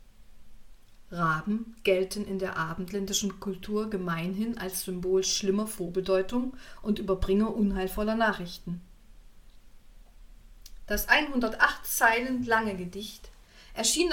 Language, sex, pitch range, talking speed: German, female, 180-220 Hz, 90 wpm